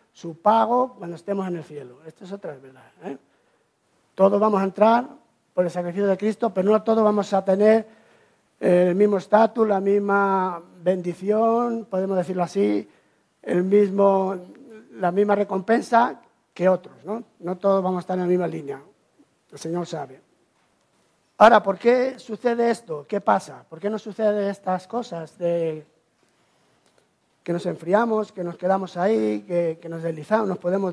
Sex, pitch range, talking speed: male, 180-215 Hz, 155 wpm